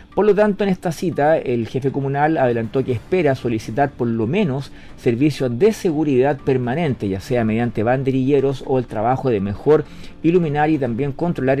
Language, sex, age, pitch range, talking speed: Portuguese, male, 40-59, 120-150 Hz, 170 wpm